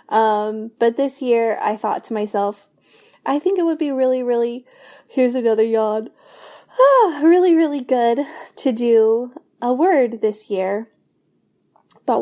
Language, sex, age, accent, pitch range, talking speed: English, female, 10-29, American, 205-245 Hz, 140 wpm